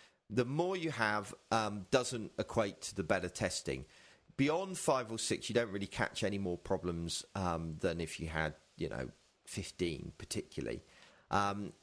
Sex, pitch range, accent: male, 90-120 Hz, British